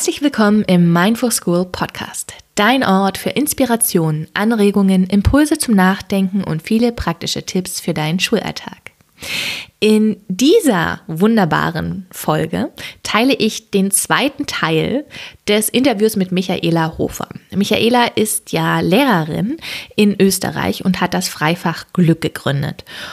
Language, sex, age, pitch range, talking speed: German, female, 20-39, 180-230 Hz, 120 wpm